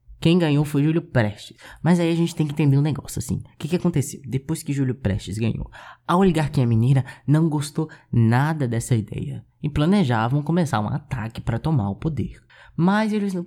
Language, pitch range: Portuguese, 120-165 Hz